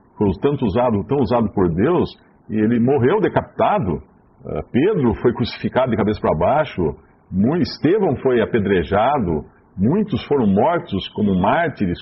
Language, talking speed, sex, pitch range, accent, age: Portuguese, 125 wpm, male, 105-145 Hz, Brazilian, 50-69